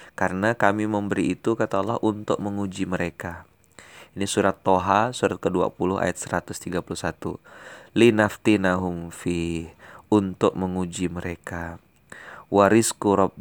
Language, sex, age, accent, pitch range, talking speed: Indonesian, male, 30-49, native, 90-105 Hz, 100 wpm